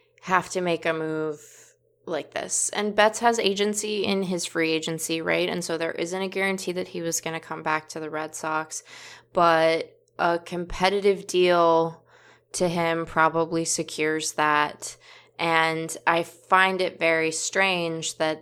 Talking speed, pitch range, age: 160 wpm, 160-190 Hz, 20-39